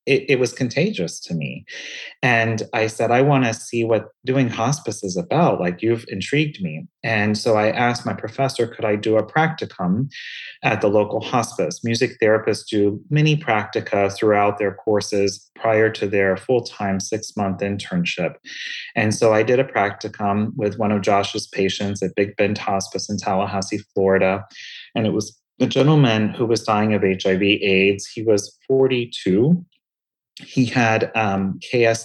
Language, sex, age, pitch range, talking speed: English, male, 30-49, 95-115 Hz, 165 wpm